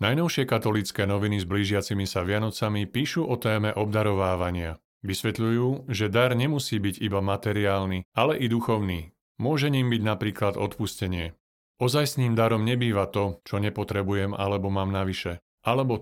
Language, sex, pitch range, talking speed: Slovak, male, 100-115 Hz, 140 wpm